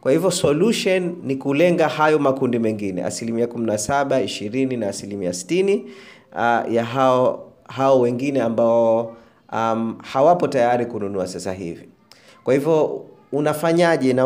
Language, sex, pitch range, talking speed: Swahili, male, 120-160 Hz, 125 wpm